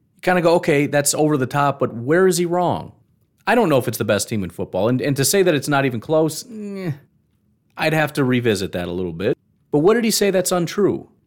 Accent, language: American, English